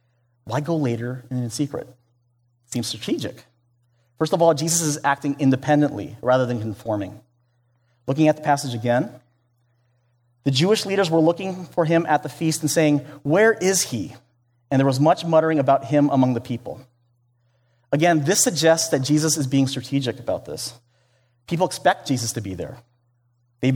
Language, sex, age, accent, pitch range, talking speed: English, male, 30-49, American, 120-155 Hz, 165 wpm